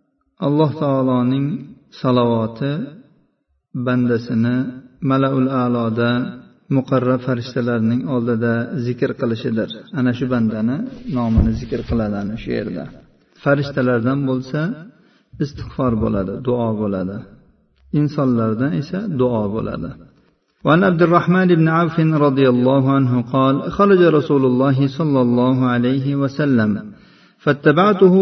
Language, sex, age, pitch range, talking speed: Russian, male, 50-69, 125-150 Hz, 85 wpm